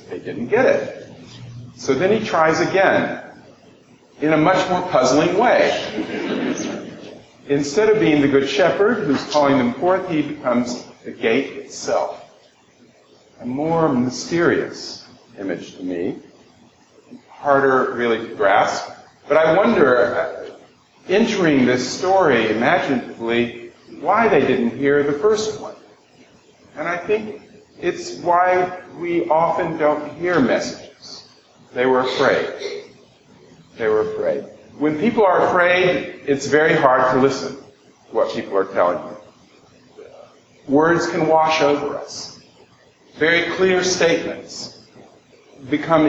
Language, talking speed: English, 120 wpm